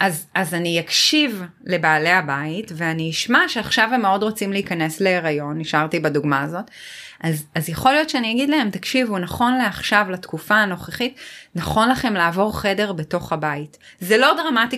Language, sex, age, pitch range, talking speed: Hebrew, female, 30-49, 170-240 Hz, 155 wpm